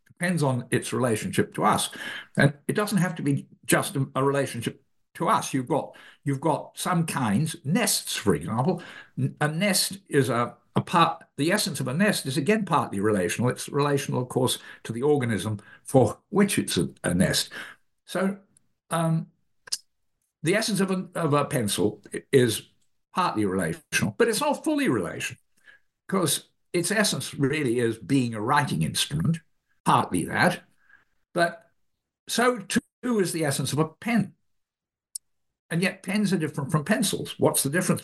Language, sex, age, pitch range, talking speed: English, male, 60-79, 135-190 Hz, 160 wpm